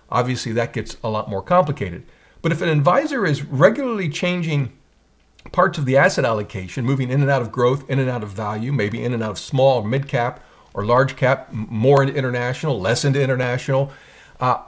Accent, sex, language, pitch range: American, male, English, 120-160 Hz